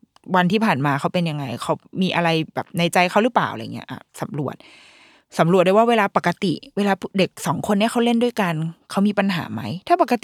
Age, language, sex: 20-39, Thai, female